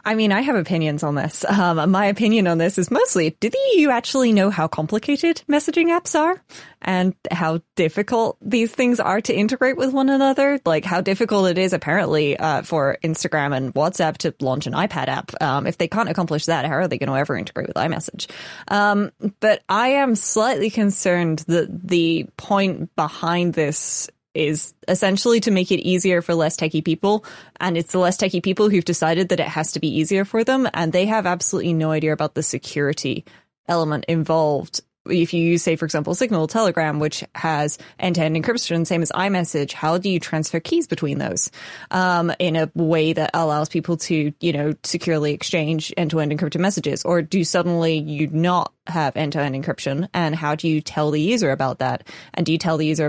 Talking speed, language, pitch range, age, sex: 195 wpm, English, 155-195 Hz, 20-39, female